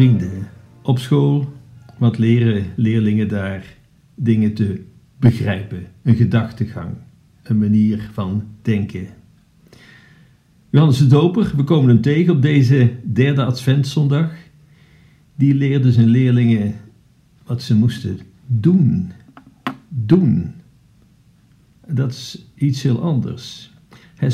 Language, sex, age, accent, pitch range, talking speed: Dutch, male, 50-69, Dutch, 115-135 Hz, 105 wpm